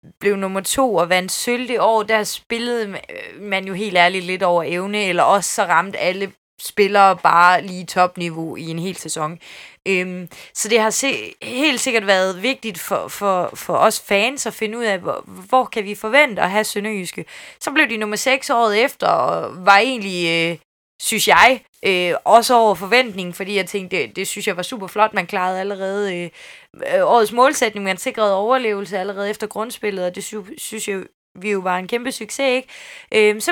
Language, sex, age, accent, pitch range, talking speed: Danish, female, 20-39, native, 190-255 Hz, 185 wpm